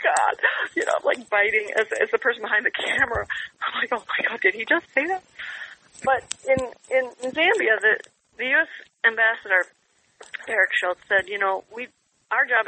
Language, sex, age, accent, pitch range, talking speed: English, female, 40-59, American, 185-255 Hz, 190 wpm